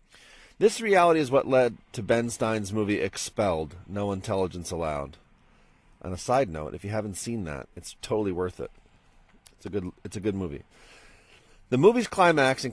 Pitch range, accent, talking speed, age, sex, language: 95-130 Hz, American, 165 wpm, 40-59, male, English